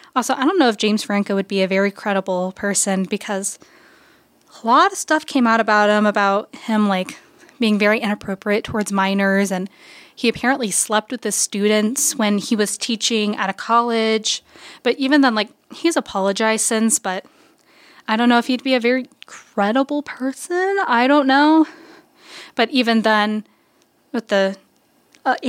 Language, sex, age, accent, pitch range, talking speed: English, female, 10-29, American, 210-265 Hz, 165 wpm